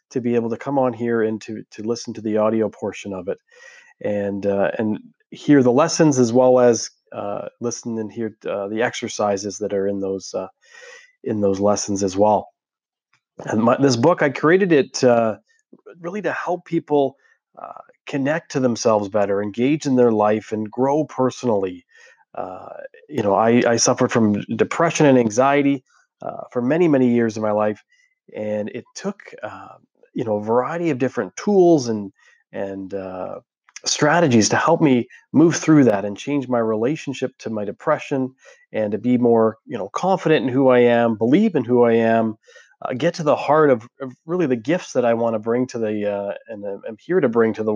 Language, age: English, 30-49